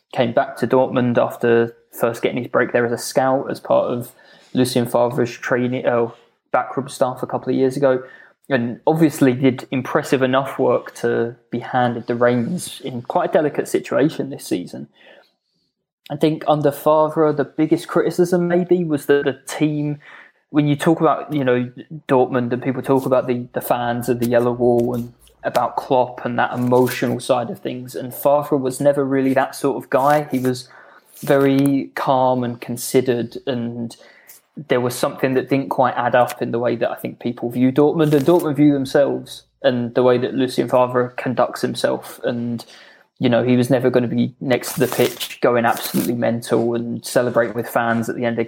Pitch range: 120-140 Hz